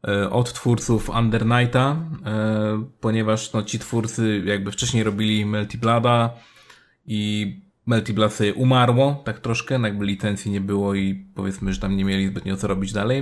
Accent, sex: native, male